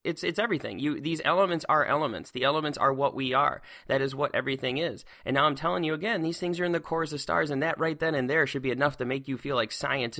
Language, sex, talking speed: English, male, 280 wpm